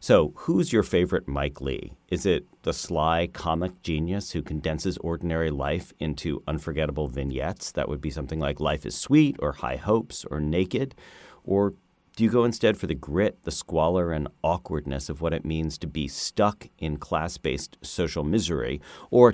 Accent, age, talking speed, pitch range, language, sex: American, 40-59, 175 wpm, 75-90 Hz, English, male